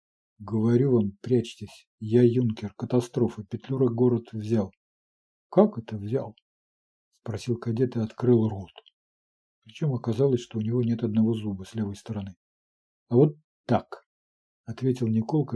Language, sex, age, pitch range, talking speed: Ukrainian, male, 50-69, 110-125 Hz, 145 wpm